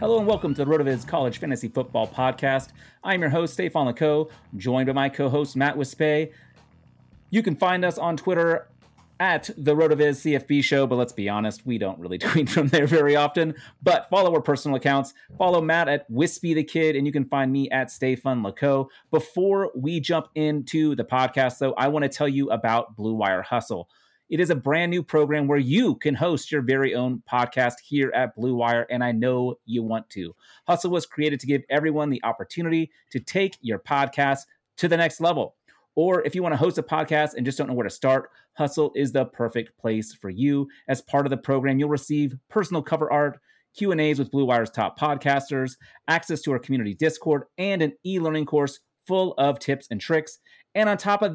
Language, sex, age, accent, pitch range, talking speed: English, male, 30-49, American, 130-160 Hz, 210 wpm